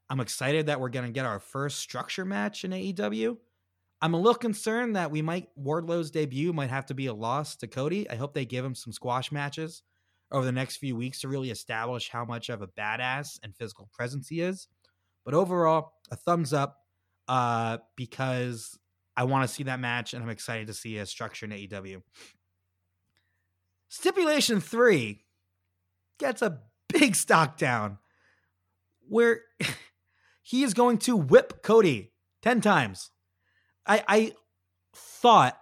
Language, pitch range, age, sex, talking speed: English, 110-175 Hz, 20-39, male, 165 wpm